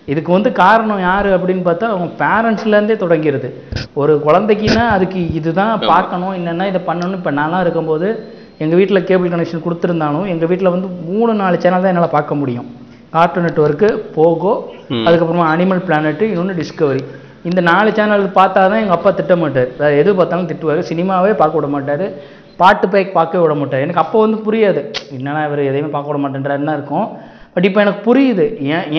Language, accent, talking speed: Tamil, native, 165 wpm